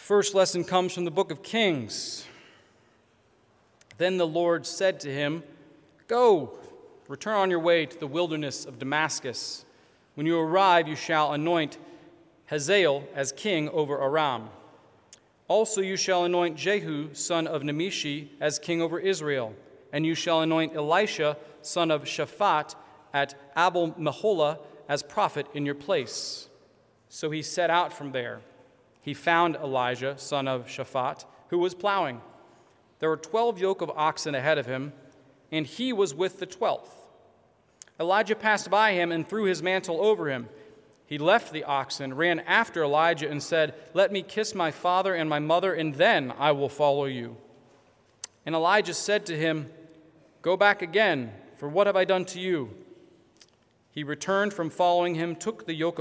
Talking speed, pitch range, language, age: 160 wpm, 145-180 Hz, English, 40-59